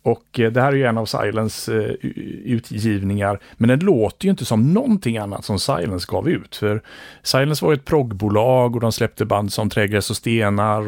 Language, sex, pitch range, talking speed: Swedish, male, 105-130 Hz, 190 wpm